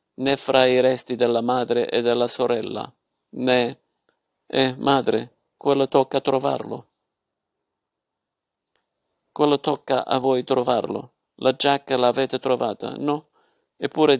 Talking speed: 110 wpm